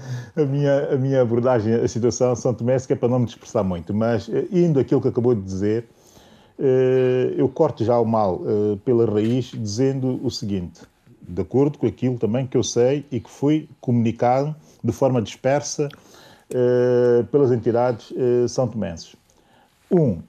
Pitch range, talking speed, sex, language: 115-145 Hz, 155 wpm, male, Portuguese